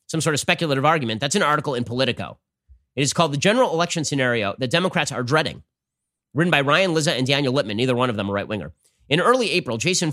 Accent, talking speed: American, 225 wpm